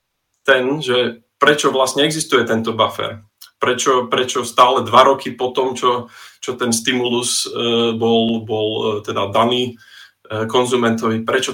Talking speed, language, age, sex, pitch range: 125 wpm, Czech, 20-39, male, 110-125 Hz